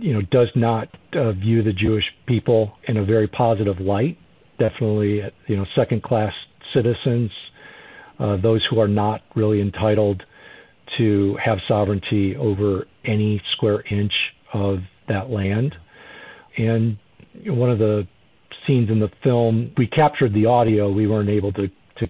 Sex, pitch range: male, 105-125 Hz